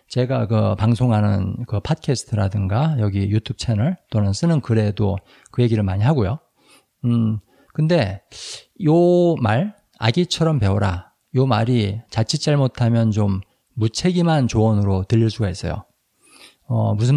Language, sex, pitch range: Korean, male, 105-140 Hz